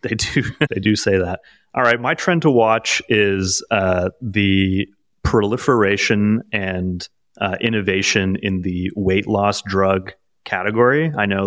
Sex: male